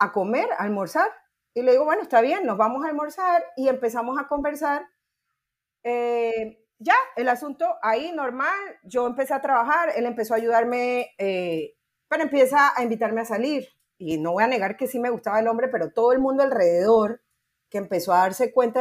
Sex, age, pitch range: female, 30-49, 220-285 Hz